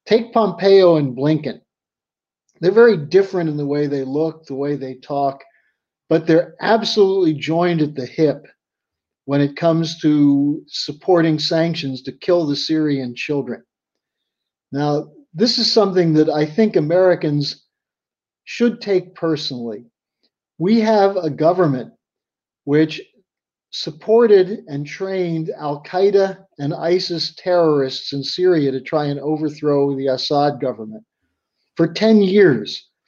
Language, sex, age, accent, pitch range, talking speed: English, male, 50-69, American, 145-180 Hz, 125 wpm